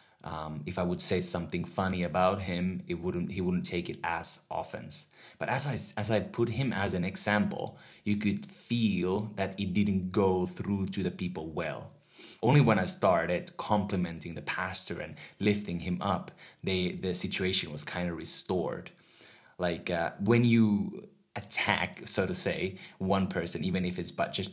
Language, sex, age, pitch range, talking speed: Finnish, male, 20-39, 90-100 Hz, 170 wpm